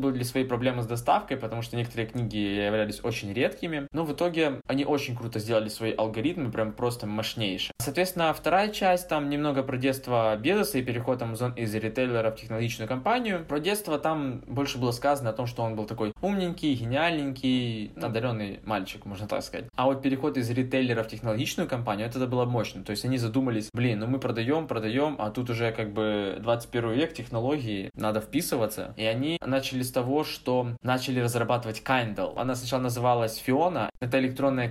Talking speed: 180 wpm